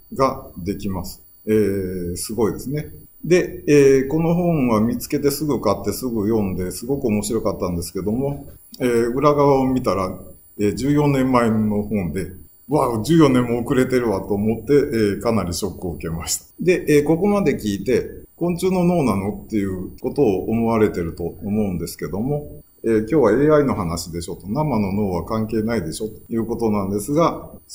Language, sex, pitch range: Japanese, male, 95-140 Hz